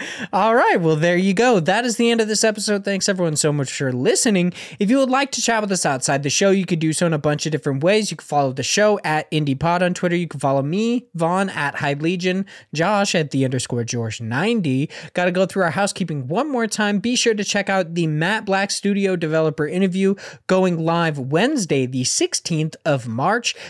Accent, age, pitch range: American, 20-39, 150-210 Hz